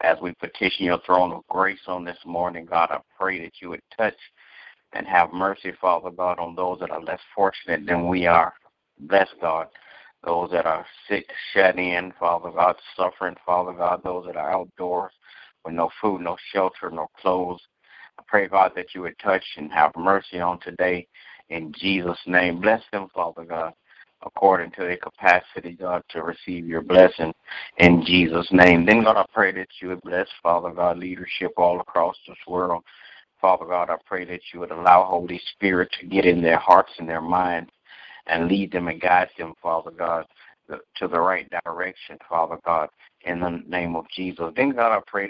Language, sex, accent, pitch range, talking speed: English, male, American, 85-90 Hz, 190 wpm